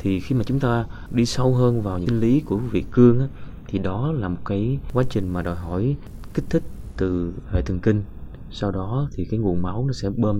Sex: male